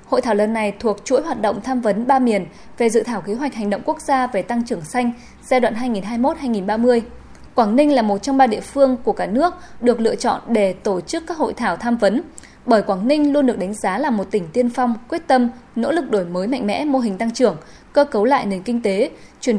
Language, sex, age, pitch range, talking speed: Vietnamese, female, 20-39, 205-275 Hz, 250 wpm